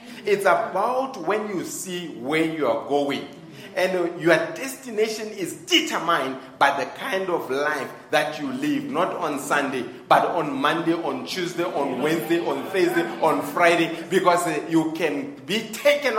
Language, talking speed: English, 150 wpm